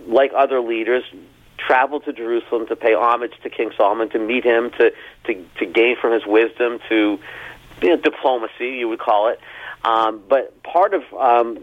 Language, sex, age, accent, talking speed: English, male, 40-59, American, 180 wpm